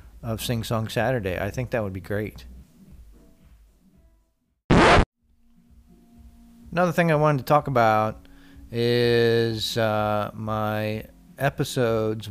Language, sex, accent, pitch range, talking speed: English, male, American, 90-115 Hz, 100 wpm